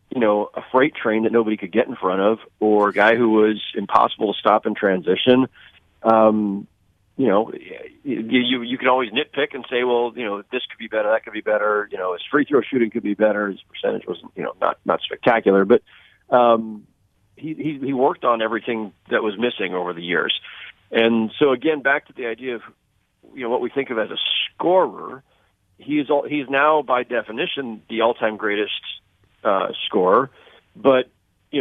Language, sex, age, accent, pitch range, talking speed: English, male, 40-59, American, 105-130 Hz, 200 wpm